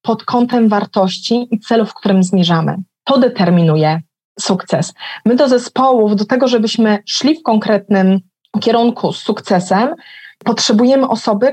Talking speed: 130 wpm